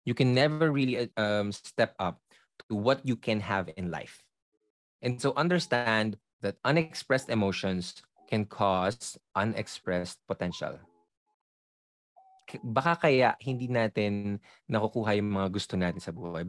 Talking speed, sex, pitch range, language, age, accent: 125 wpm, male, 95-130 Hz, Filipino, 20-39, native